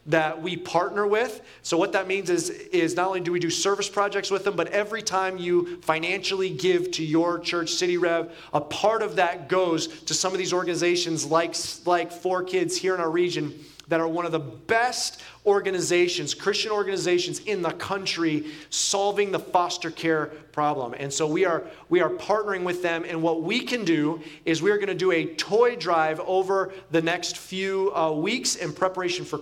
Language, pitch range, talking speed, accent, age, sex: English, 165-200 Hz, 195 wpm, American, 30-49, male